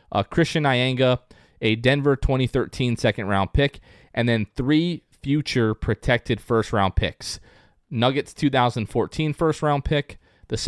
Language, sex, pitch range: English, male, 105-130 Hz